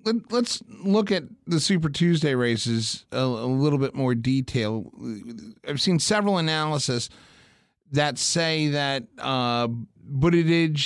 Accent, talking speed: American, 120 wpm